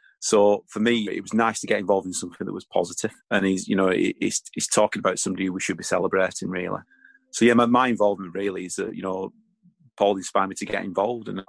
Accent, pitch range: British, 95-105 Hz